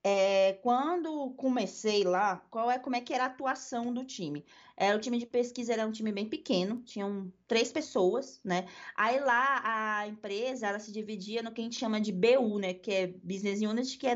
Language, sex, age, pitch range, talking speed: Portuguese, female, 20-39, 205-260 Hz, 200 wpm